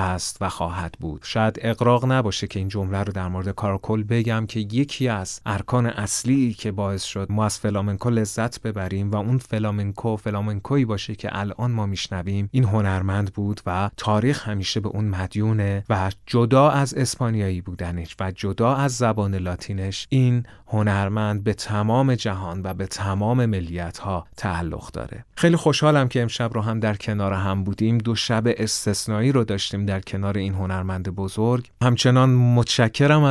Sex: male